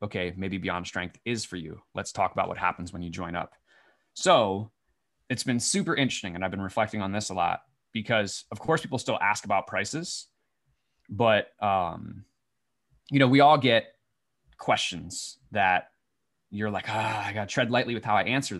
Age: 20-39